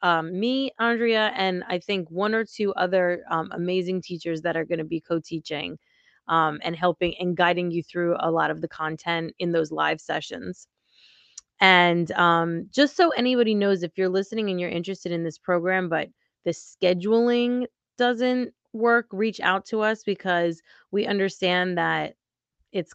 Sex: female